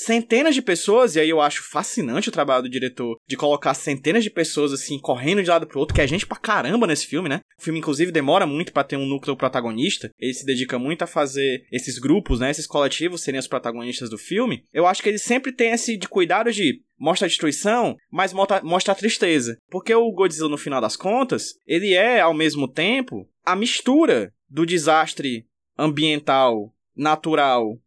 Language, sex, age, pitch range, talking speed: Portuguese, male, 20-39, 140-225 Hz, 190 wpm